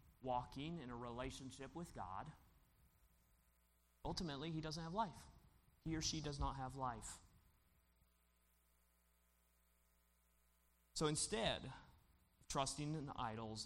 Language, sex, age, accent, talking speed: English, male, 30-49, American, 110 wpm